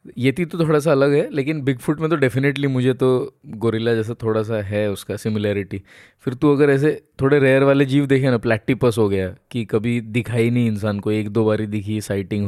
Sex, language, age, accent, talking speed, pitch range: male, Hindi, 20-39, native, 220 wpm, 115-140 Hz